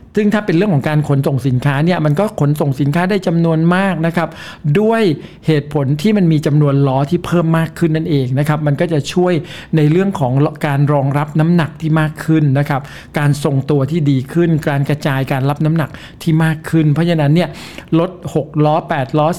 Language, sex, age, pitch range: Thai, male, 60-79, 140-170 Hz